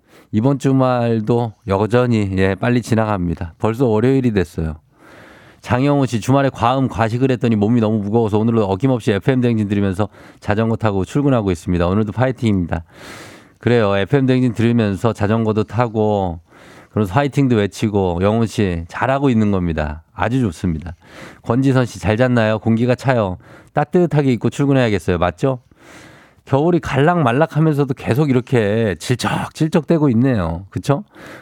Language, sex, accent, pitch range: Korean, male, native, 100-135 Hz